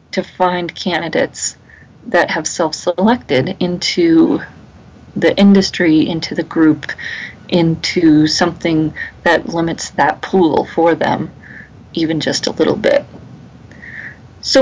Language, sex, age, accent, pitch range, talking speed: English, female, 30-49, American, 165-200 Hz, 105 wpm